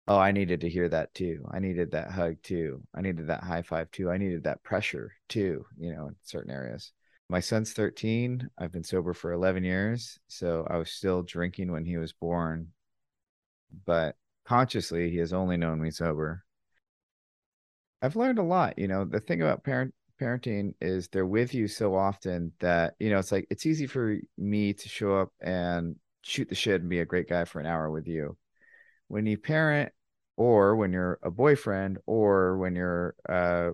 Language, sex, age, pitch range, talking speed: English, male, 30-49, 85-100 Hz, 195 wpm